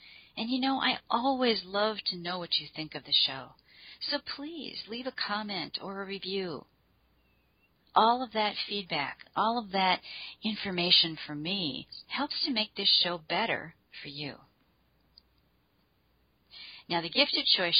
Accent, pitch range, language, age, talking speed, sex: American, 150-215 Hz, English, 50-69, 150 wpm, female